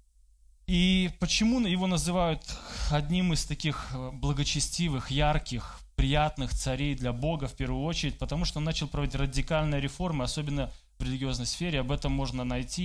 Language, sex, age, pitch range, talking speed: Russian, male, 20-39, 110-155 Hz, 145 wpm